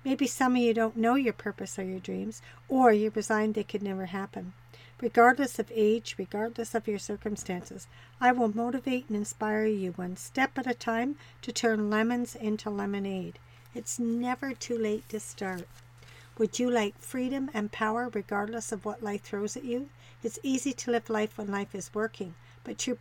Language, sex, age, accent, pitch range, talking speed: English, female, 60-79, American, 200-240 Hz, 190 wpm